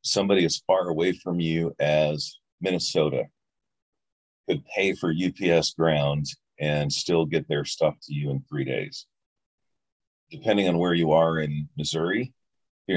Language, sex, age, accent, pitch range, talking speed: English, male, 40-59, American, 75-85 Hz, 145 wpm